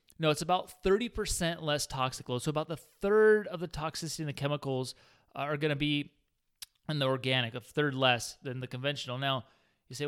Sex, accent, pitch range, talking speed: male, American, 135-165 Hz, 195 wpm